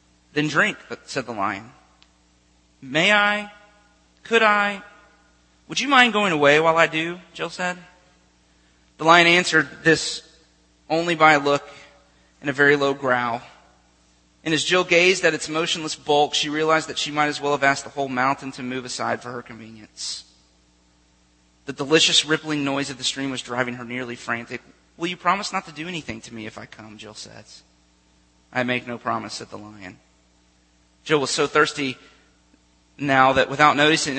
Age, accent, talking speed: 30-49, American, 175 wpm